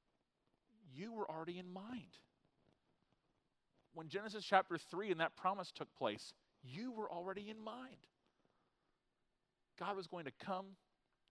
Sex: male